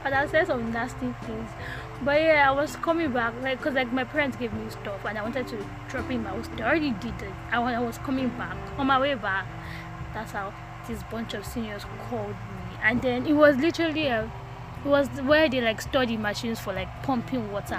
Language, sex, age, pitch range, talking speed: English, female, 10-29, 230-290 Hz, 225 wpm